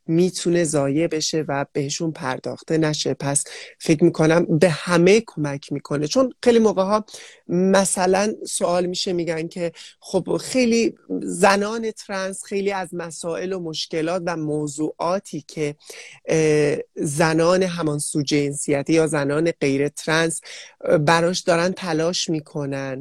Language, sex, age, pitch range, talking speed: English, male, 30-49, 150-190 Hz, 120 wpm